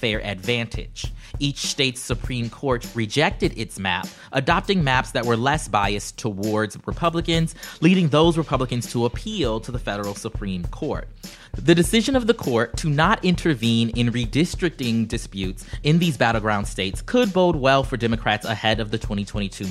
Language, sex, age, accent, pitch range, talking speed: English, male, 30-49, American, 115-165 Hz, 155 wpm